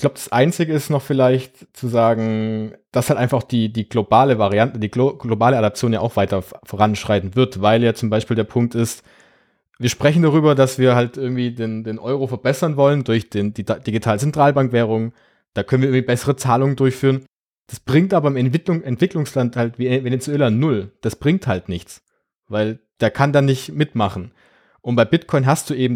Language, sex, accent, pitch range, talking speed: German, male, German, 115-140 Hz, 185 wpm